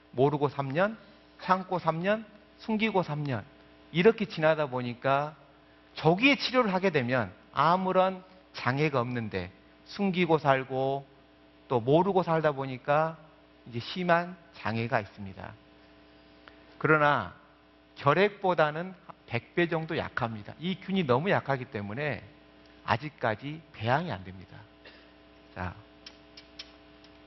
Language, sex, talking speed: English, male, 90 wpm